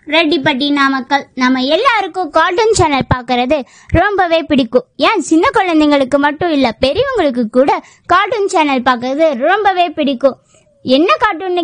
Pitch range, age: 260-340 Hz, 20-39